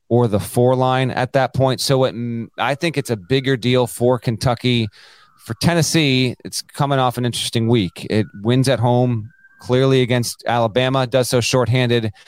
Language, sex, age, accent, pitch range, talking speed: English, male, 30-49, American, 115-145 Hz, 165 wpm